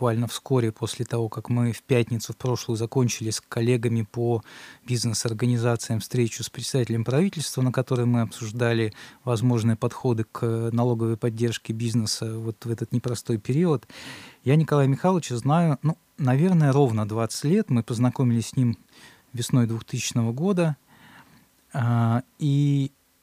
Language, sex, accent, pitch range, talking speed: Russian, male, native, 115-130 Hz, 130 wpm